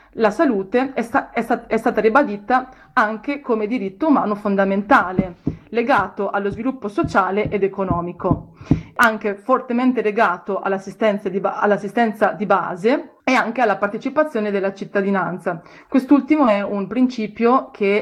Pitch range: 195-235 Hz